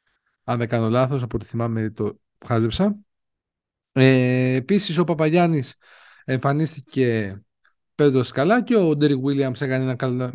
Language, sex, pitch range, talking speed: Greek, male, 120-165 Hz, 135 wpm